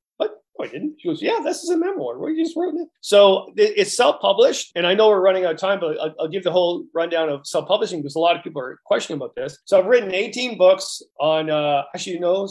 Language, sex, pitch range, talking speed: English, male, 155-195 Hz, 270 wpm